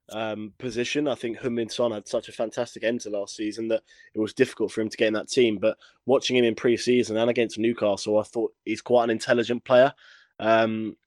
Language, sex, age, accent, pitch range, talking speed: English, male, 20-39, British, 110-125 Hz, 230 wpm